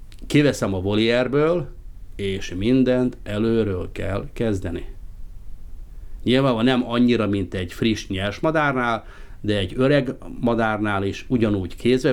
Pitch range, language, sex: 95-115 Hz, Hungarian, male